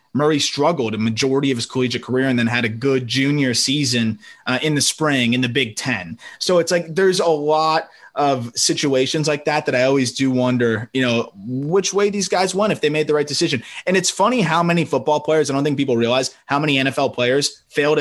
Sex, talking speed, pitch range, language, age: male, 225 wpm, 125-150 Hz, English, 20-39